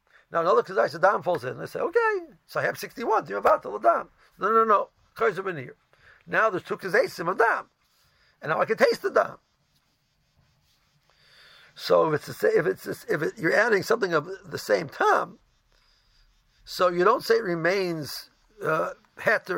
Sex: male